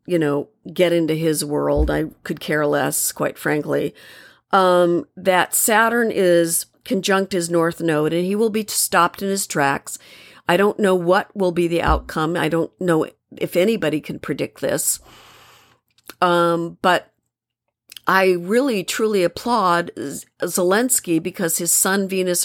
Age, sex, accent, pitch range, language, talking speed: 50-69, female, American, 165-205 Hz, English, 145 wpm